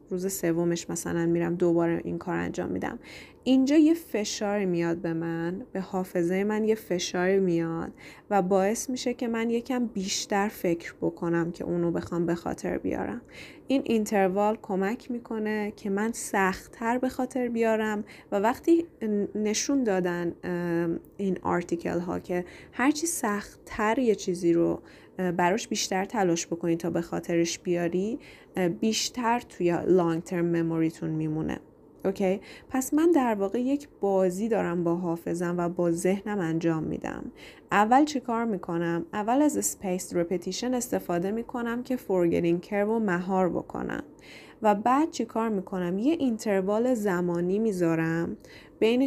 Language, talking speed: Persian, 140 wpm